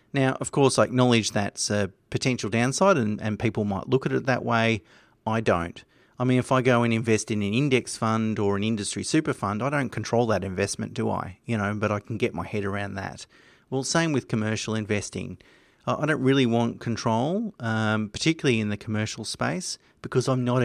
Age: 30-49